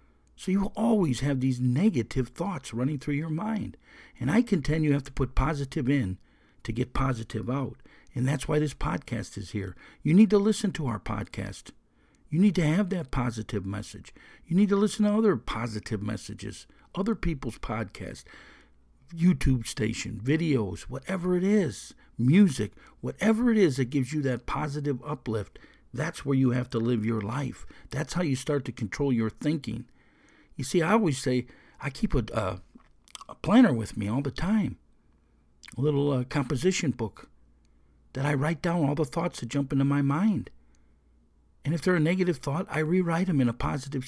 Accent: American